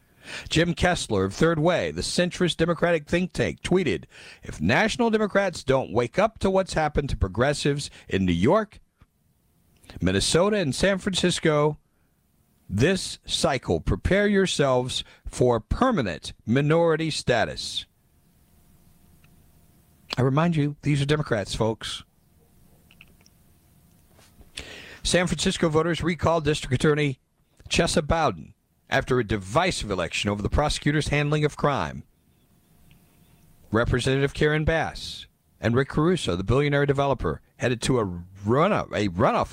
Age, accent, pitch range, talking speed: 50-69, American, 105-160 Hz, 115 wpm